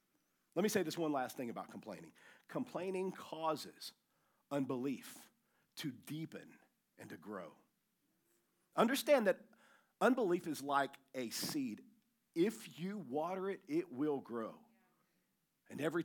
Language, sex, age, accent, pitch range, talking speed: English, male, 50-69, American, 150-240 Hz, 125 wpm